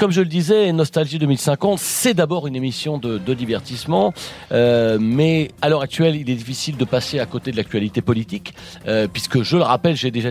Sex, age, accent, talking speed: male, 40-59, French, 205 wpm